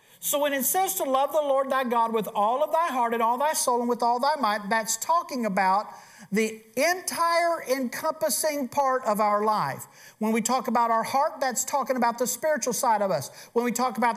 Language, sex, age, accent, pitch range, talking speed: English, male, 50-69, American, 210-270 Hz, 220 wpm